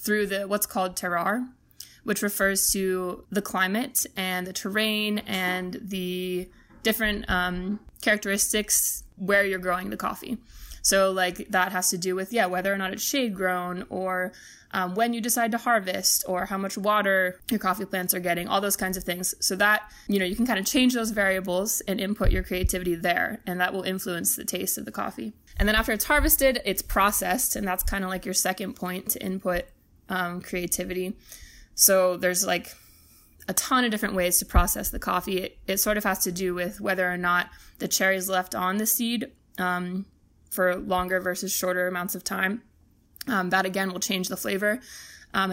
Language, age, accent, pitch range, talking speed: English, 20-39, American, 185-210 Hz, 190 wpm